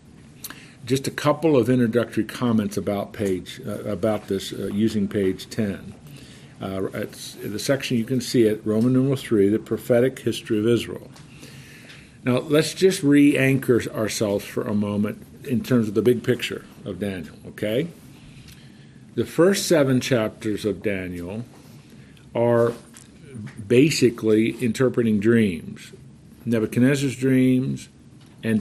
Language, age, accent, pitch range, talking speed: English, 50-69, American, 110-130 Hz, 130 wpm